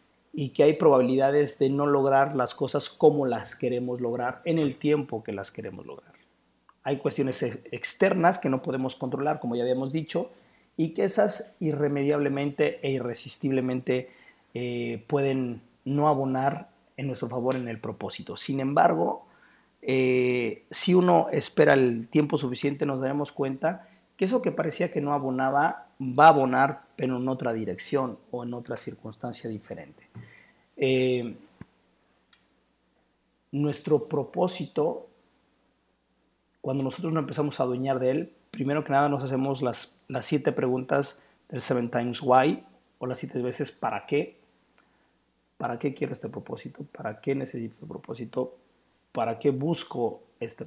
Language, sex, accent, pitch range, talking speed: Spanish, male, Mexican, 125-150 Hz, 145 wpm